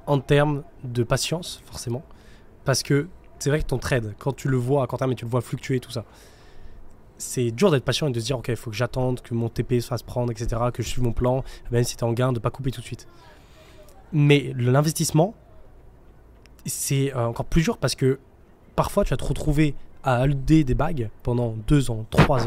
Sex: male